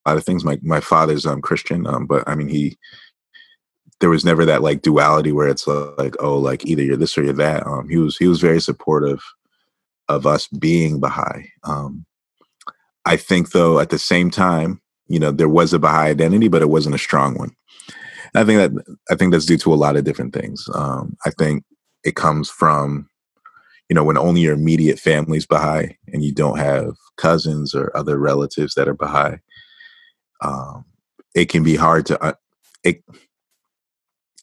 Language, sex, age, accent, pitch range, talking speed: English, male, 30-49, American, 70-80 Hz, 190 wpm